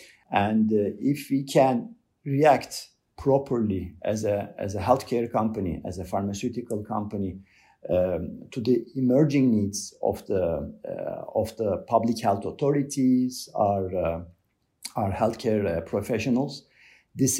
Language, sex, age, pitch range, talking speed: English, male, 50-69, 105-130 Hz, 115 wpm